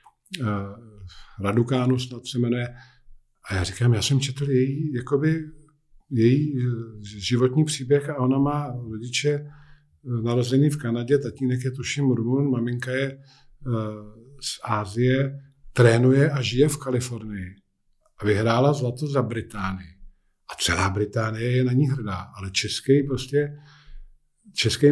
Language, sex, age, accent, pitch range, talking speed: Czech, male, 50-69, native, 120-140 Hz, 125 wpm